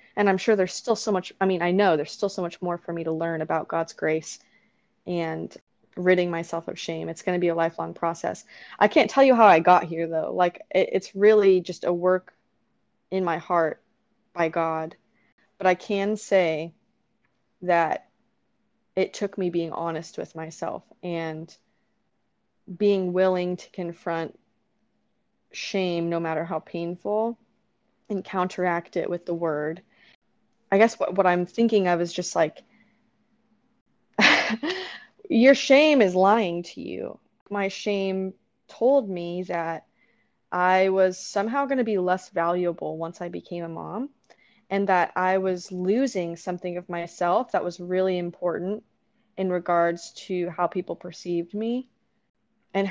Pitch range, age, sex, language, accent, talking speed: 175-225 Hz, 20-39, female, English, American, 155 wpm